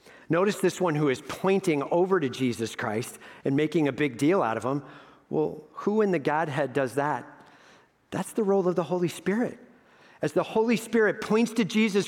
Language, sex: English, male